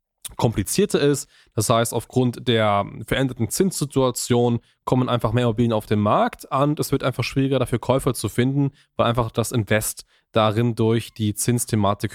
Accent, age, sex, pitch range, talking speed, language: German, 10-29, male, 125-155 Hz, 160 wpm, German